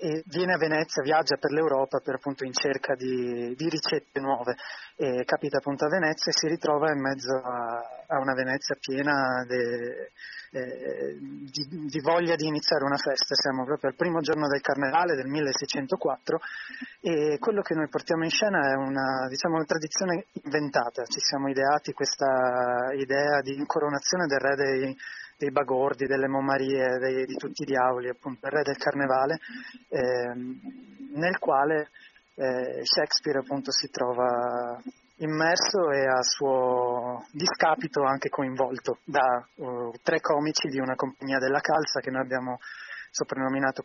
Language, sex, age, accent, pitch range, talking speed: Italian, male, 20-39, native, 130-155 Hz, 140 wpm